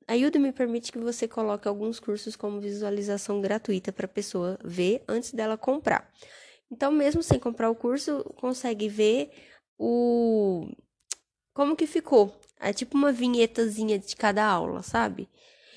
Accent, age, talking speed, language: Brazilian, 10-29, 140 wpm, Portuguese